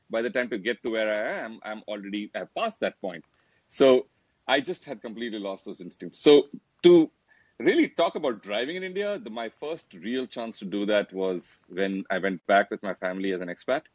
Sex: male